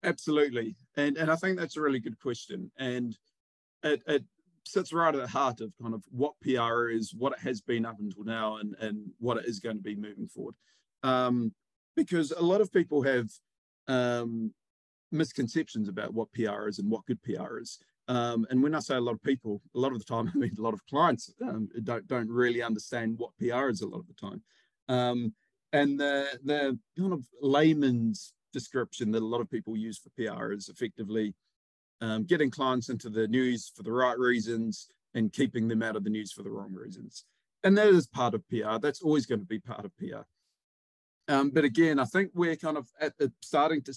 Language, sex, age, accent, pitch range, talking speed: English, male, 30-49, Australian, 110-140 Hz, 210 wpm